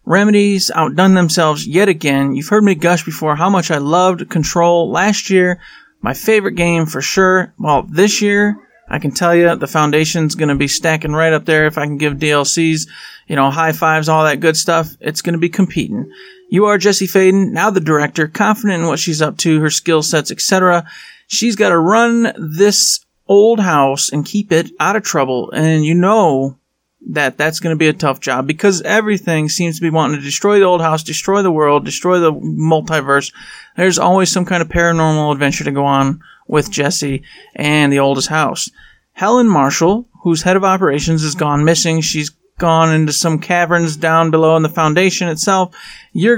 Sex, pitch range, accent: male, 155-185 Hz, American